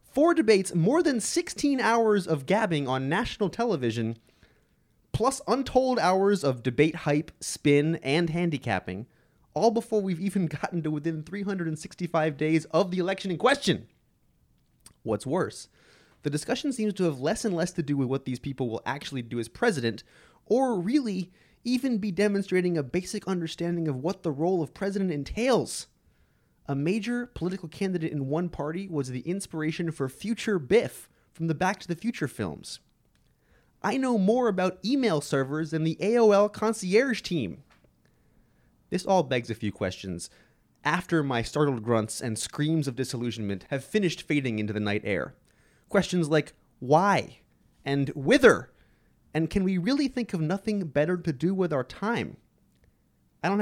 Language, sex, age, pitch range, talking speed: English, male, 20-39, 140-200 Hz, 160 wpm